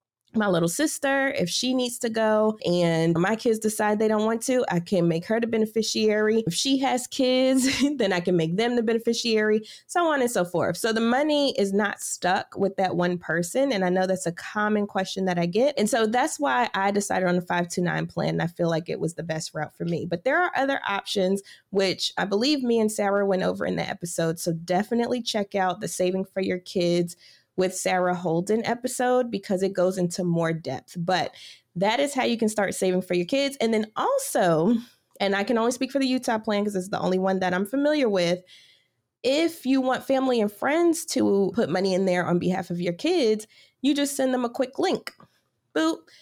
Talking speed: 220 wpm